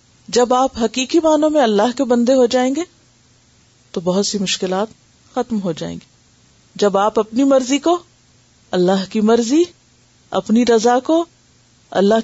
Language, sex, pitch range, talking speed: Urdu, female, 160-235 Hz, 150 wpm